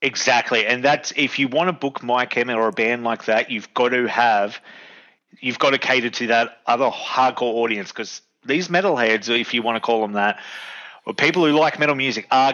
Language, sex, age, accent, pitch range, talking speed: English, male, 30-49, Australian, 120-155 Hz, 215 wpm